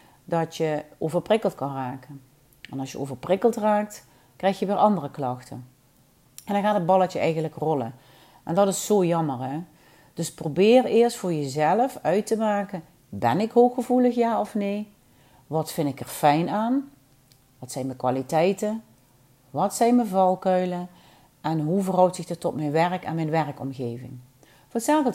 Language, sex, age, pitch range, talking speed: Dutch, female, 40-59, 145-205 Hz, 160 wpm